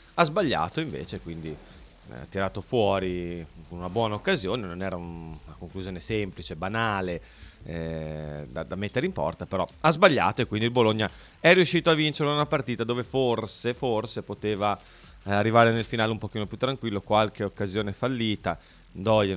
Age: 30-49